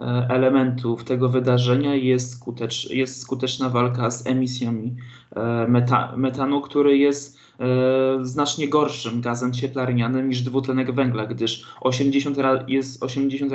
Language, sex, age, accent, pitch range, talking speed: Polish, male, 20-39, native, 125-140 Hz, 110 wpm